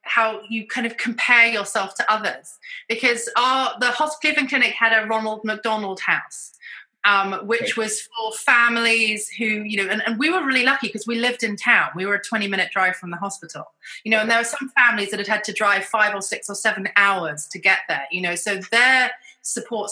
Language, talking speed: English, 215 wpm